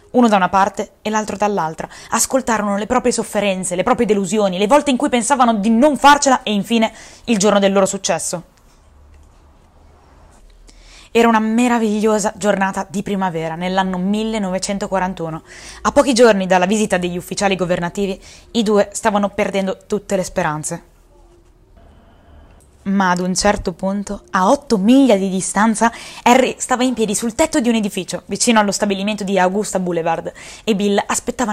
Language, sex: Italian, female